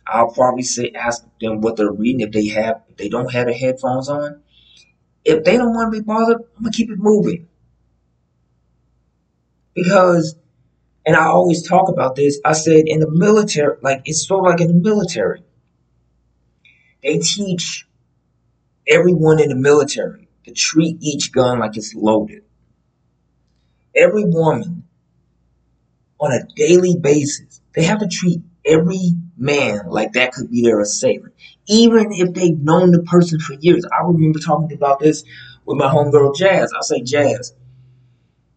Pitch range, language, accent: 115-175 Hz, English, American